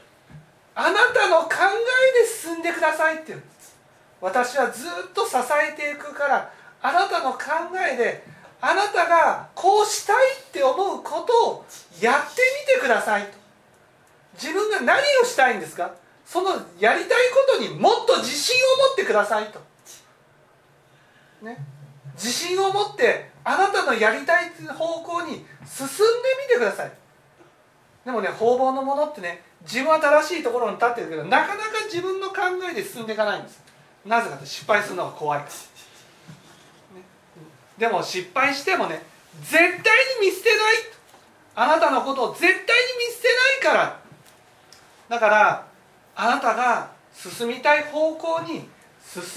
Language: Japanese